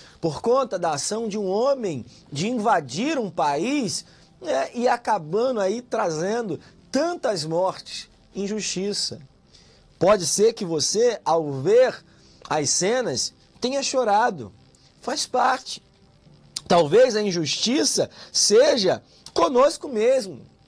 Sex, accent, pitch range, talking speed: male, Brazilian, 185-250 Hz, 105 wpm